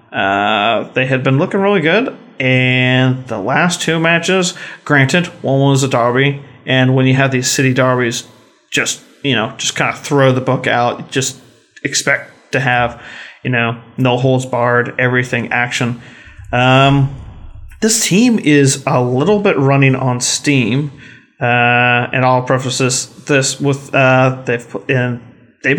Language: English